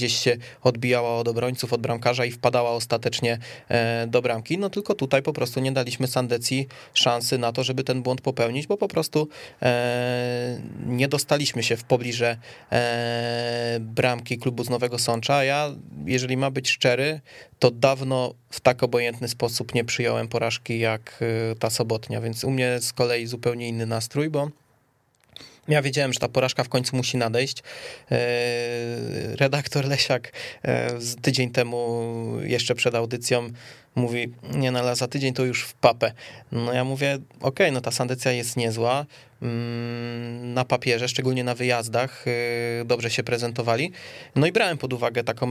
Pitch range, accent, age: 120-135 Hz, native, 20-39